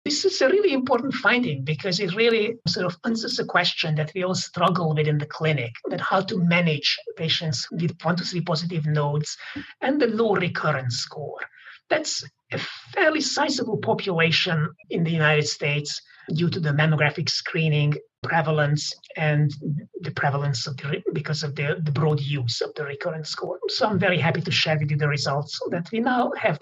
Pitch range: 150-200 Hz